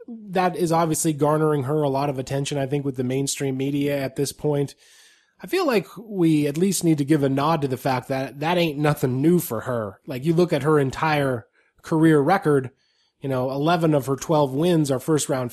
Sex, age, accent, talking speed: male, 20-39, American, 220 wpm